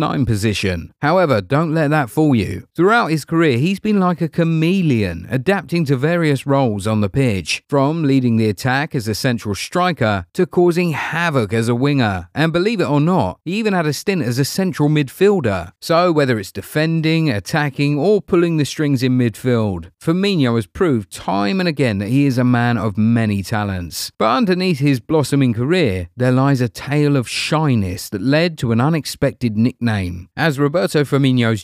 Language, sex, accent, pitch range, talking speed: English, male, British, 110-160 Hz, 180 wpm